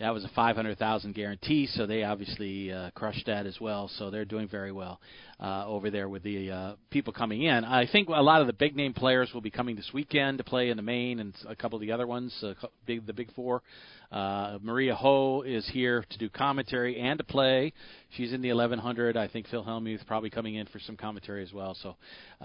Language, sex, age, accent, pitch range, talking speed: English, male, 40-59, American, 105-130 Hz, 235 wpm